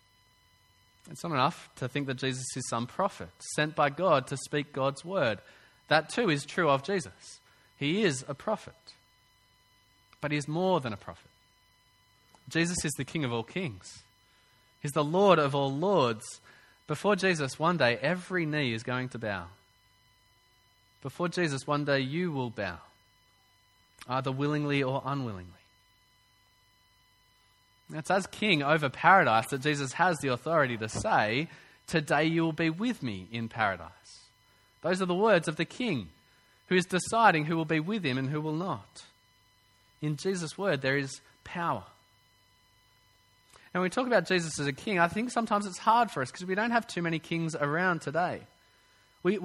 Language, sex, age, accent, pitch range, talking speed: English, male, 20-39, Australian, 105-170 Hz, 170 wpm